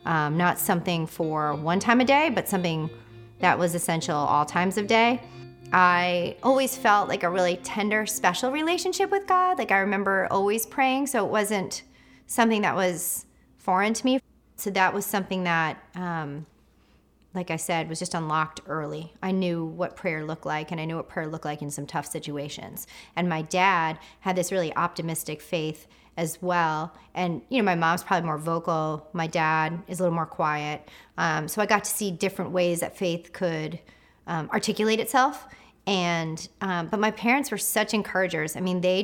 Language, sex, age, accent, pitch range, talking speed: English, female, 30-49, American, 165-210 Hz, 190 wpm